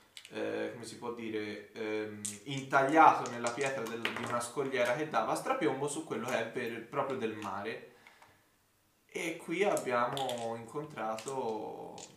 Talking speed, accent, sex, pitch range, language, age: 140 wpm, native, male, 105-130 Hz, Italian, 20-39